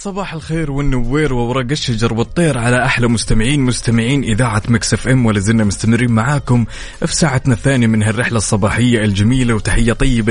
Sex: male